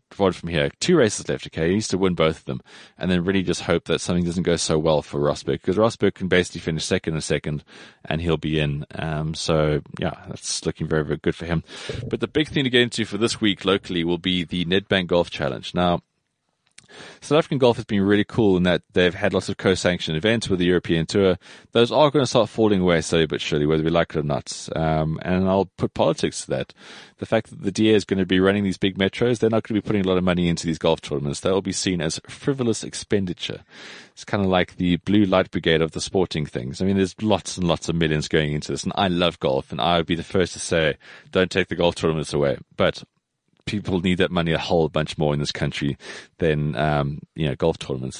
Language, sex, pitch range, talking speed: English, male, 80-100 Hz, 250 wpm